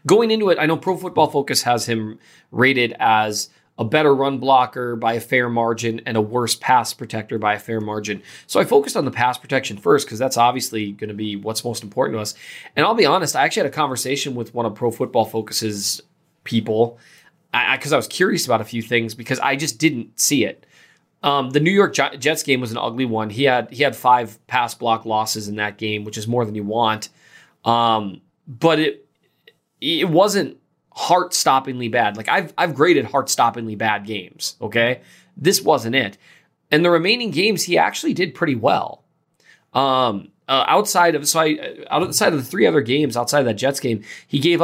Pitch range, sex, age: 110-145 Hz, male, 20-39